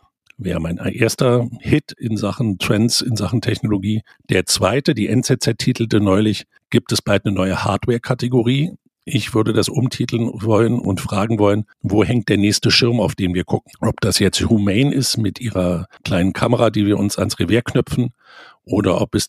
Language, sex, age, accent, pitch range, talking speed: German, male, 50-69, German, 95-115 Hz, 175 wpm